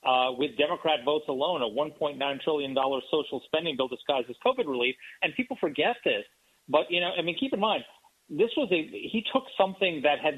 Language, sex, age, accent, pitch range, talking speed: English, male, 40-59, American, 150-210 Hz, 200 wpm